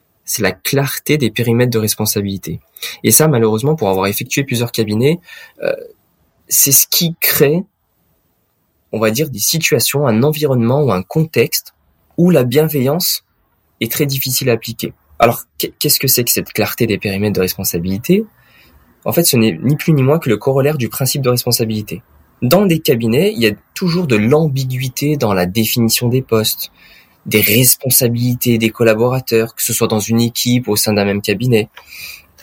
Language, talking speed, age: French, 170 wpm, 20-39